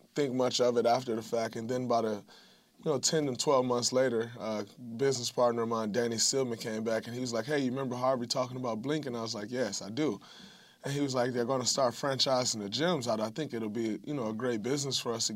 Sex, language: male, English